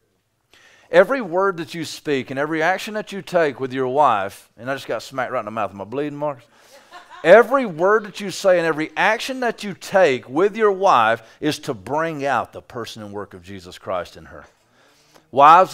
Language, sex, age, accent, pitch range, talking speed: English, male, 40-59, American, 120-165 Hz, 210 wpm